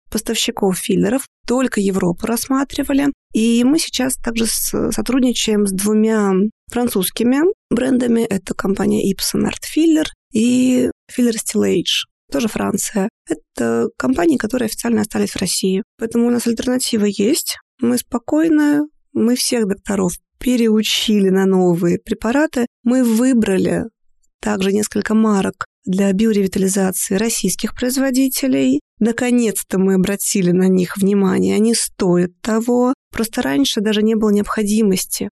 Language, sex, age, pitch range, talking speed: Russian, female, 20-39, 195-245 Hz, 115 wpm